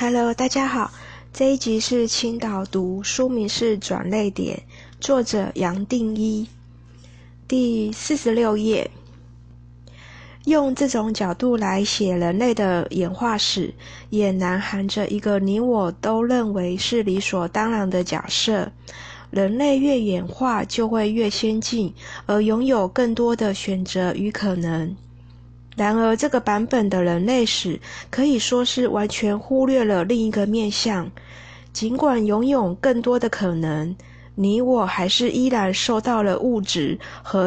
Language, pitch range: Chinese, 180-245 Hz